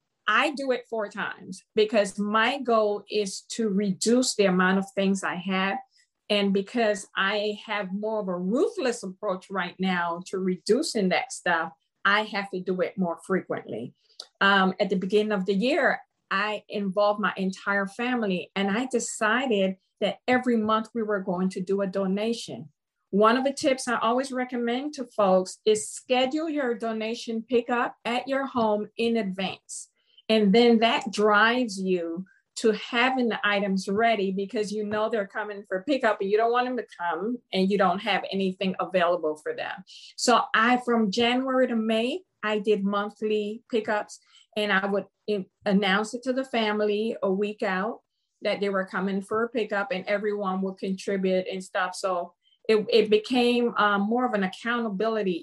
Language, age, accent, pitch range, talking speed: English, 50-69, American, 195-230 Hz, 170 wpm